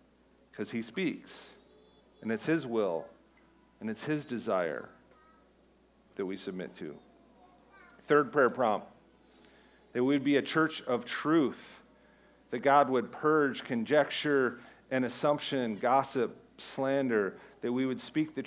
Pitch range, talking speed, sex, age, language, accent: 125-150 Hz, 125 wpm, male, 40-59, English, American